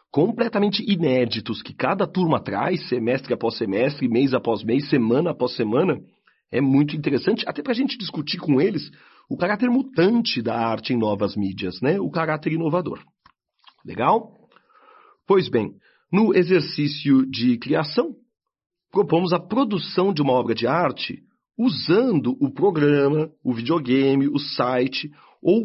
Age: 40-59